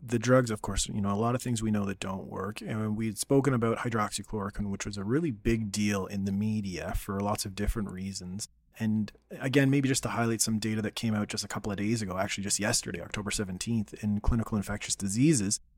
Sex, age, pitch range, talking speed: male, 30-49, 100-125 Hz, 230 wpm